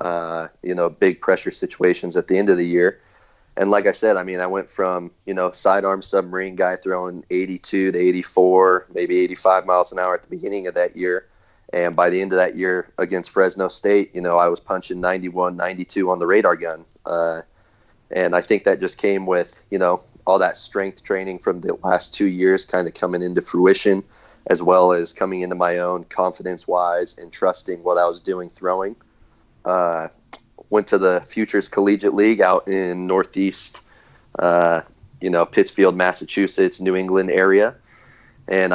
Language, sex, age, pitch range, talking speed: English, male, 30-49, 90-95 Hz, 185 wpm